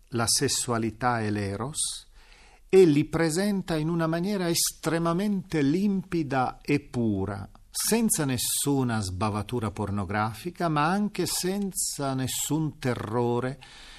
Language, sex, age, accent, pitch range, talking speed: Italian, male, 50-69, native, 115-170 Hz, 100 wpm